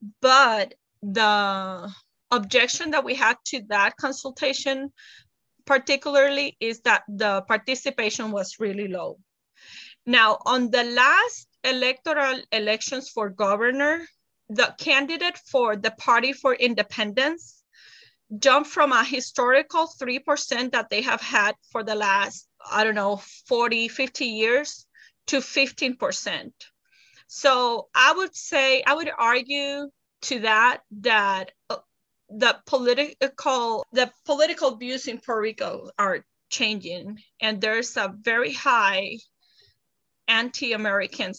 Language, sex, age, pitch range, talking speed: English, female, 30-49, 210-275 Hz, 115 wpm